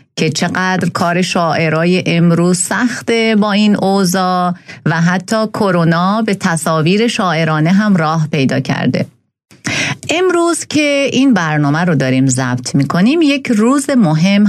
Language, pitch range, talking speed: Persian, 150-205 Hz, 130 wpm